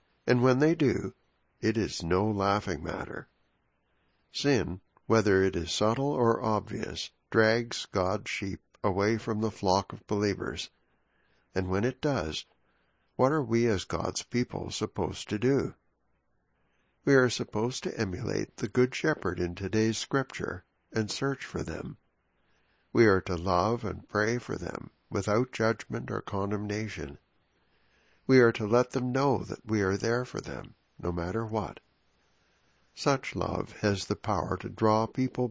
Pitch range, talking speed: 95-120 Hz, 150 wpm